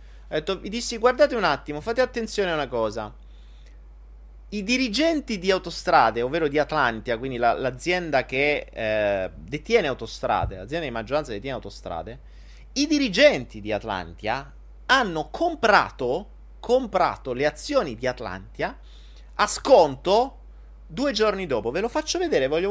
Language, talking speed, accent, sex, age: Italian, 130 wpm, native, male, 30-49